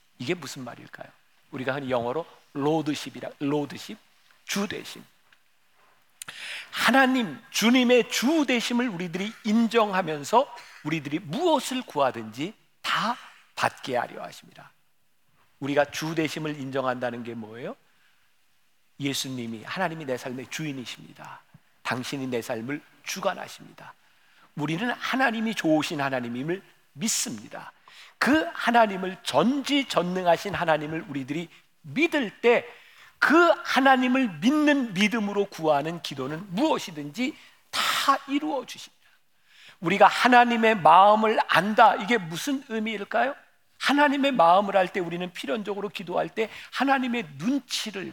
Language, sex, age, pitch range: Korean, male, 50-69, 145-235 Hz